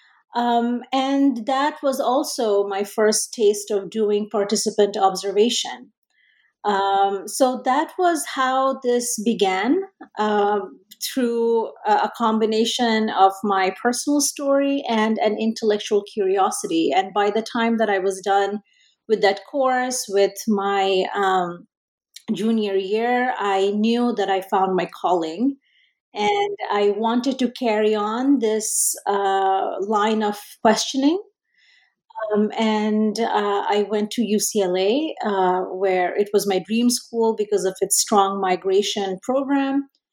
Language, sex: English, female